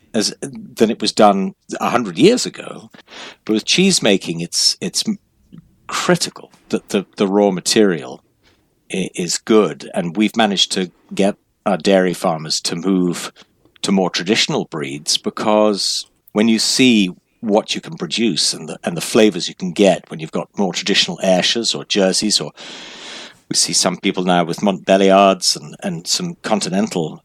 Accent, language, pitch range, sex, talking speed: British, English, 90-110 Hz, male, 160 wpm